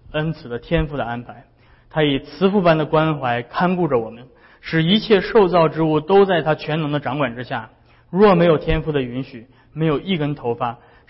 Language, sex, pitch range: Chinese, male, 120-155 Hz